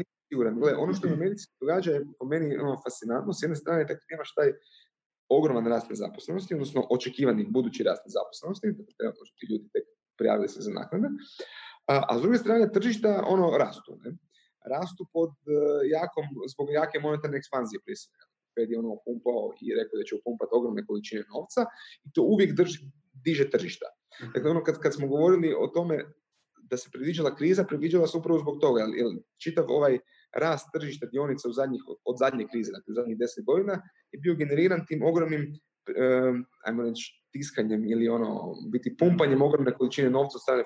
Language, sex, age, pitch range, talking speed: Croatian, male, 30-49, 135-205 Hz, 165 wpm